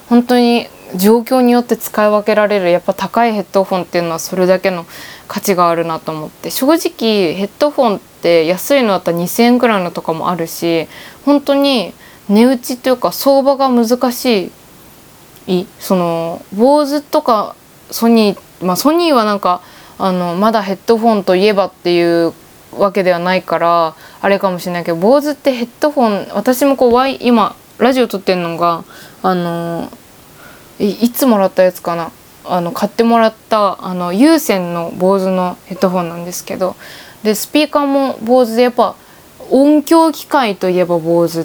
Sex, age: female, 20-39